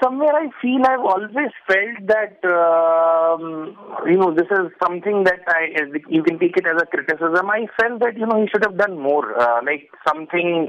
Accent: Indian